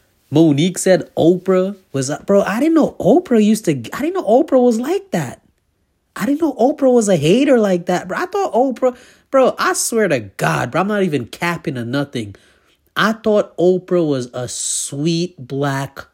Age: 30-49